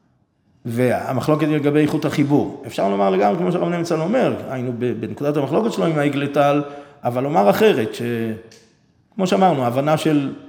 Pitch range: 125-155 Hz